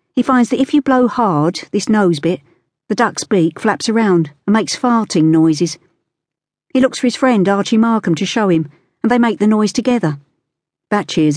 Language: English